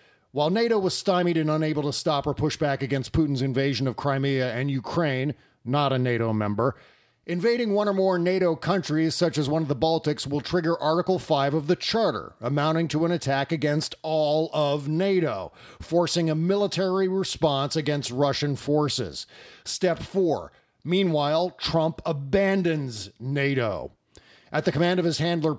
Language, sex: English, male